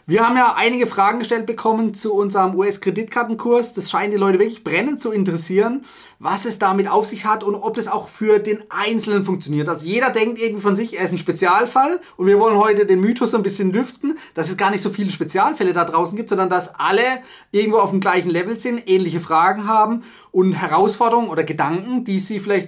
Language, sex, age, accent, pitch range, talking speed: German, male, 30-49, German, 170-220 Hz, 210 wpm